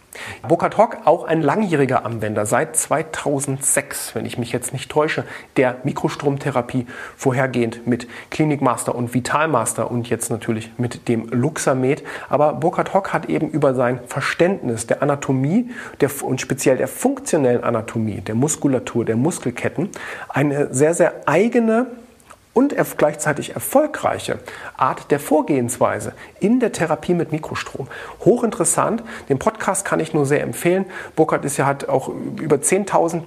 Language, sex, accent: German, male, German